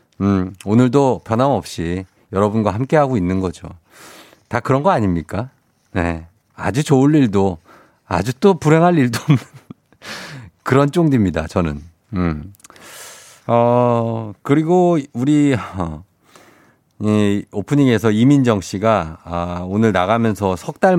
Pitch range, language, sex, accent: 95-140 Hz, Korean, male, native